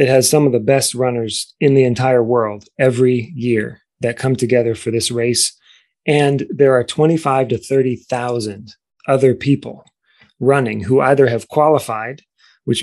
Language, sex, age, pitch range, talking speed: English, male, 30-49, 120-140 Hz, 155 wpm